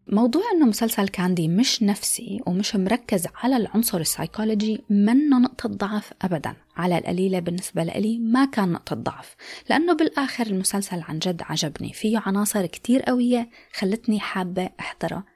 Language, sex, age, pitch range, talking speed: Arabic, female, 20-39, 180-235 Hz, 140 wpm